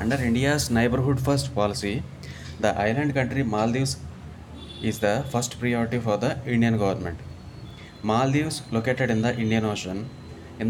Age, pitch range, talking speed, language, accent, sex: 20-39, 110-130 Hz, 135 wpm, English, Indian, male